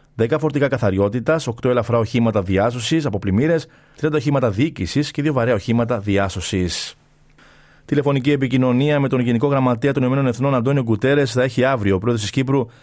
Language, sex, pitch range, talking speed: Greek, male, 110-140 Hz, 165 wpm